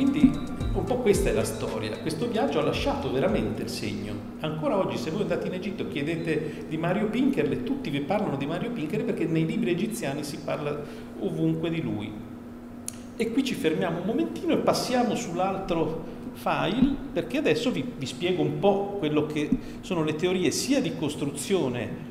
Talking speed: 180 wpm